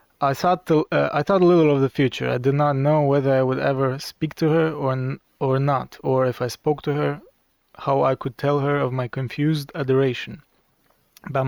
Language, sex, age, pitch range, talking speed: Romanian, male, 20-39, 130-145 Hz, 220 wpm